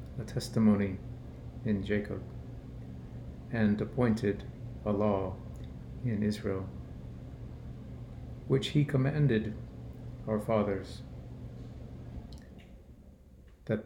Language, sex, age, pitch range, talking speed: English, male, 50-69, 70-110 Hz, 70 wpm